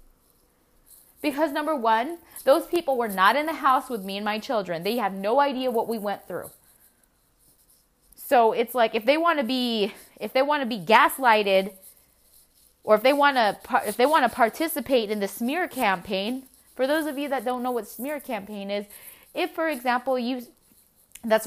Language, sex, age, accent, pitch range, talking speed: English, female, 20-39, American, 220-295 Hz, 185 wpm